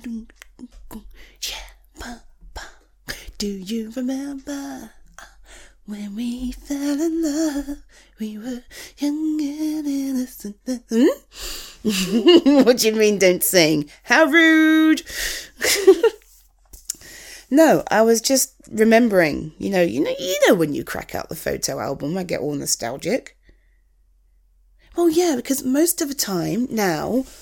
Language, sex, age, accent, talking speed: English, female, 30-49, British, 115 wpm